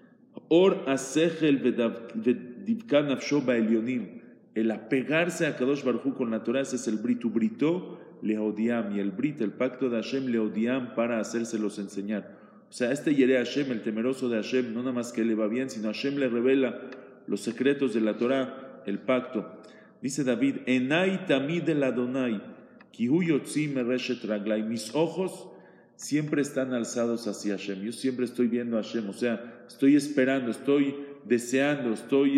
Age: 40-59